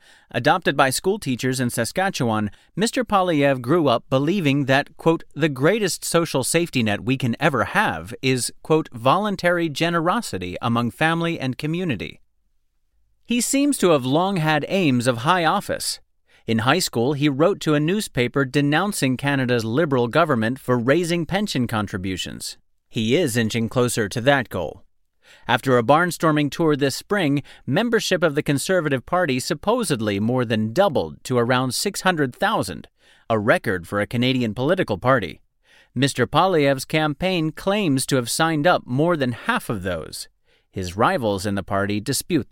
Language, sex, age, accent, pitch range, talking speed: English, male, 30-49, American, 125-175 Hz, 150 wpm